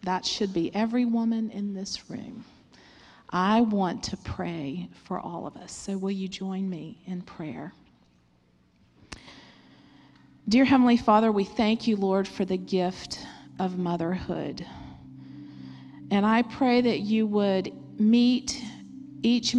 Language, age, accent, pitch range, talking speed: English, 40-59, American, 145-215 Hz, 130 wpm